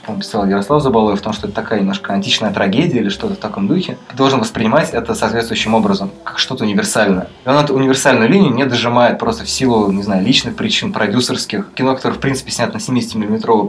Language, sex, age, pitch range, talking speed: Russian, male, 20-39, 105-130 Hz, 205 wpm